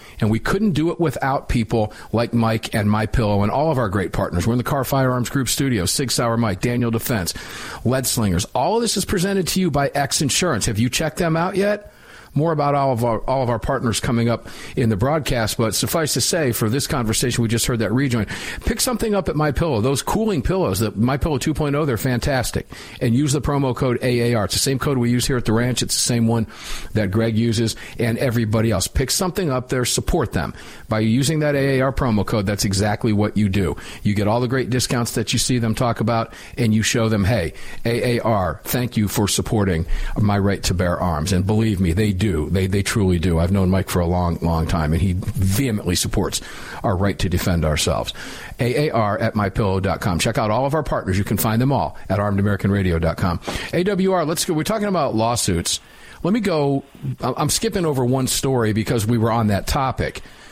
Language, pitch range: English, 105-135 Hz